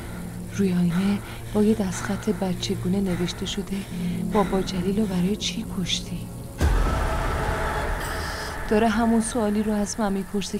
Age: 30-49